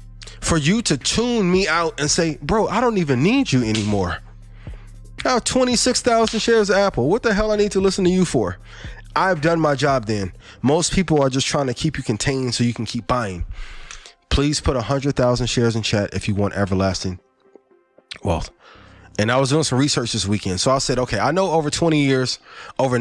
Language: English